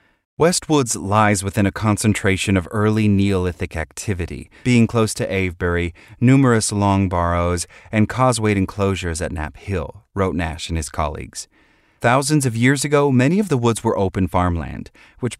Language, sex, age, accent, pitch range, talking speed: English, male, 30-49, American, 85-115 Hz, 150 wpm